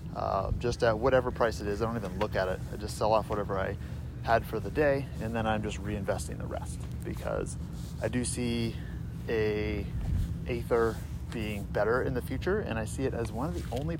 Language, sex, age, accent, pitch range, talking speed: English, male, 30-49, American, 100-120 Hz, 215 wpm